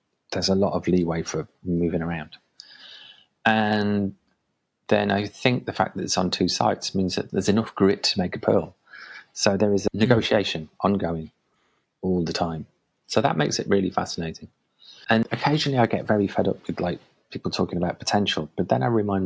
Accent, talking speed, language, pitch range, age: British, 185 wpm, English, 85-100 Hz, 30-49